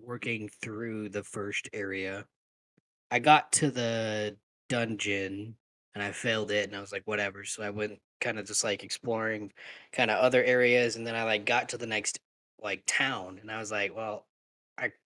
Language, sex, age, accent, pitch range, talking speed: English, male, 10-29, American, 100-120 Hz, 185 wpm